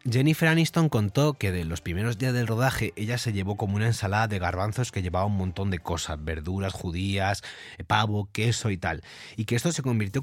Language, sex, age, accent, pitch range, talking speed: Spanish, male, 30-49, Spanish, 100-130 Hz, 205 wpm